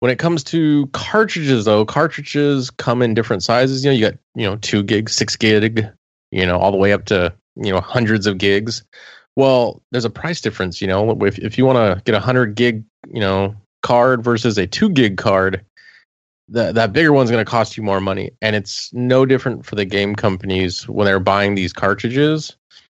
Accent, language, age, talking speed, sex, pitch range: American, English, 20-39, 210 wpm, male, 100-125 Hz